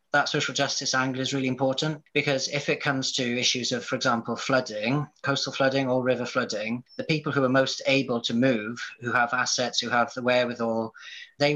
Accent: British